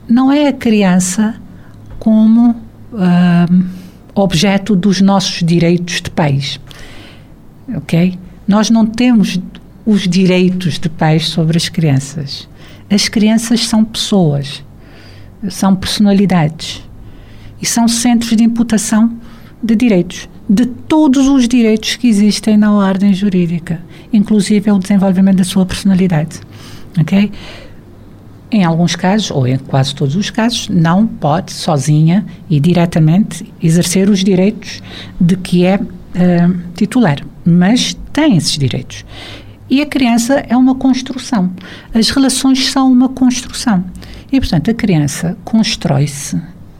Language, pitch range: Portuguese, 160-220 Hz